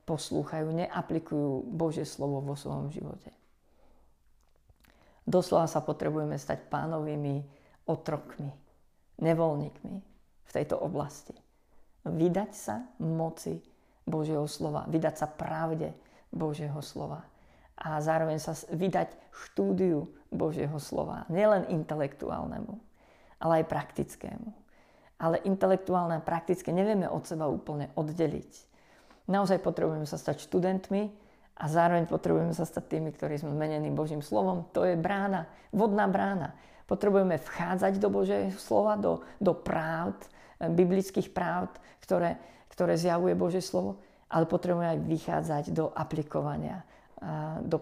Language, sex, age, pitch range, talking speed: Slovak, female, 50-69, 155-190 Hz, 115 wpm